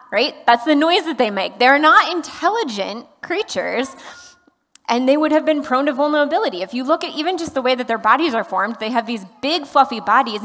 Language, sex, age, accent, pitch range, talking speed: English, female, 20-39, American, 220-305 Hz, 220 wpm